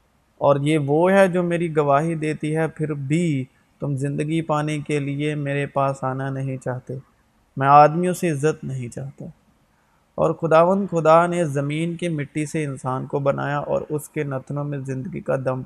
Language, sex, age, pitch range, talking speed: Urdu, male, 30-49, 135-155 Hz, 175 wpm